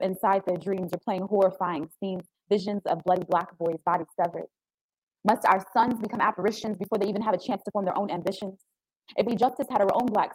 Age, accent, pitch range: 20-39, American, 175-205 Hz